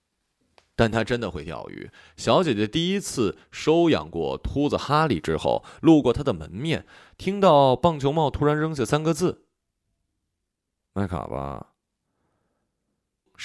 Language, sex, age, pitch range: Chinese, male, 20-39, 90-130 Hz